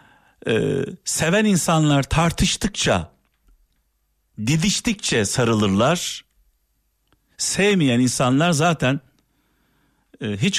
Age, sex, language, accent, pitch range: 50-69, male, Turkish, native, 105-145 Hz